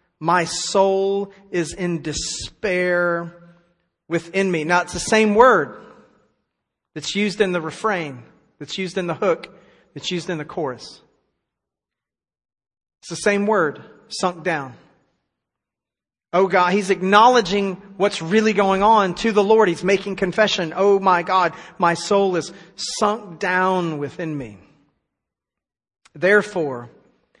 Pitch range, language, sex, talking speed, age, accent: 160-195 Hz, English, male, 125 wpm, 40-59, American